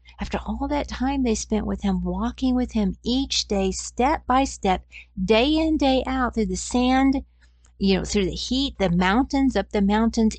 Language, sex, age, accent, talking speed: English, female, 50-69, American, 190 wpm